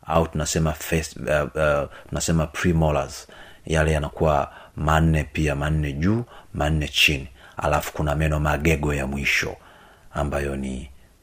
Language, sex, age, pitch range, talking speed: Swahili, male, 30-49, 75-85 Hz, 120 wpm